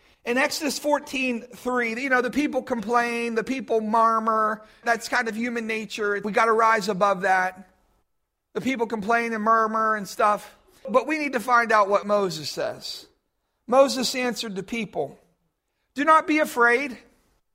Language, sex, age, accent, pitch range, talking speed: English, male, 50-69, American, 230-295 Hz, 160 wpm